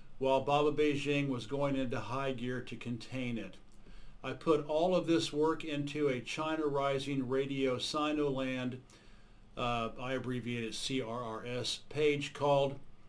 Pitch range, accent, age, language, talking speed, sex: 120-160 Hz, American, 50-69, English, 140 wpm, male